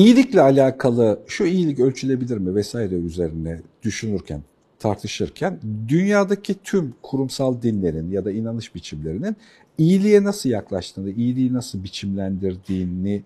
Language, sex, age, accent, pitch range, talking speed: Turkish, male, 50-69, native, 85-140 Hz, 110 wpm